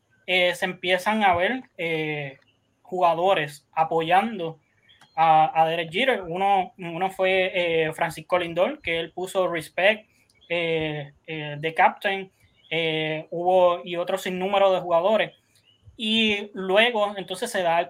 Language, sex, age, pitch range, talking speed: Spanish, male, 20-39, 165-200 Hz, 130 wpm